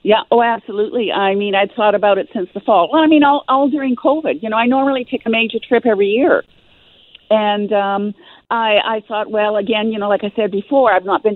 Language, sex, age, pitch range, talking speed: English, female, 50-69, 205-245 Hz, 240 wpm